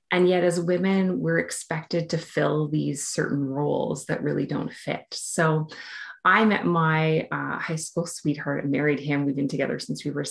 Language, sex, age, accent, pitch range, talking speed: English, female, 30-49, American, 140-170 Hz, 185 wpm